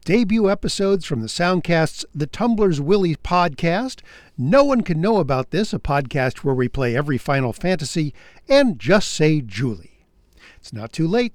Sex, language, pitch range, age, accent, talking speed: male, English, 145-230 Hz, 50-69, American, 165 wpm